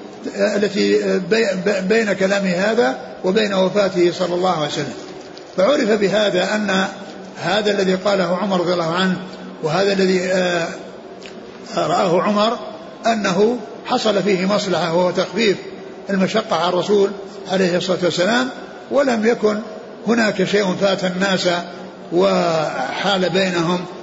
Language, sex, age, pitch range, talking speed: Arabic, male, 50-69, 180-210 Hz, 110 wpm